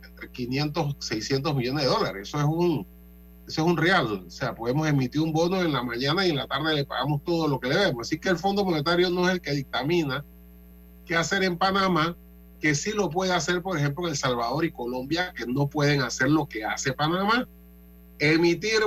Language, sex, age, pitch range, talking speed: Spanish, male, 30-49, 125-175 Hz, 210 wpm